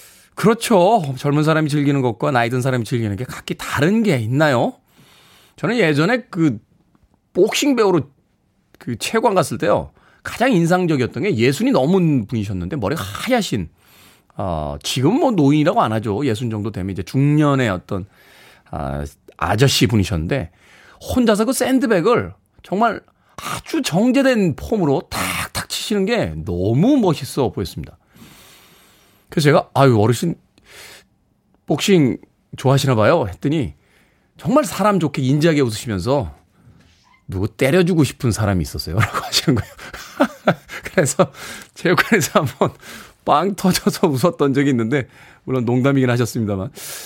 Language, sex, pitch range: Korean, male, 115-175 Hz